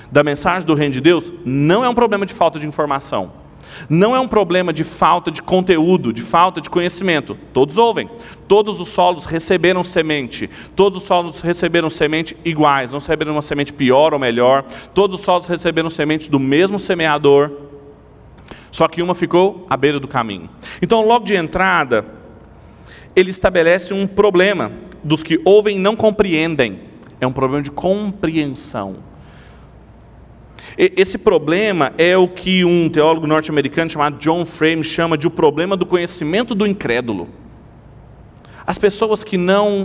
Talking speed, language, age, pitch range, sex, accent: 155 wpm, Portuguese, 40-59, 145-195 Hz, male, Brazilian